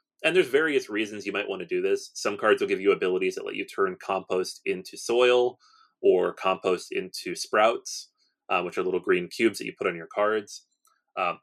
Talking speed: 210 wpm